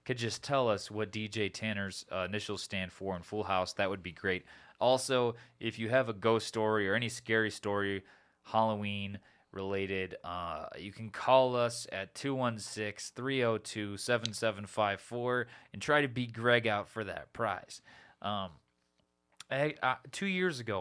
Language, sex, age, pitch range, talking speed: English, male, 20-39, 95-120 Hz, 150 wpm